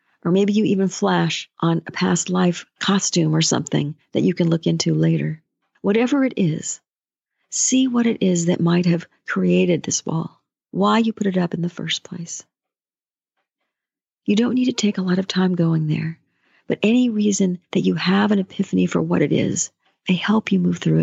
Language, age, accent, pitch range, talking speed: English, 50-69, American, 170-225 Hz, 195 wpm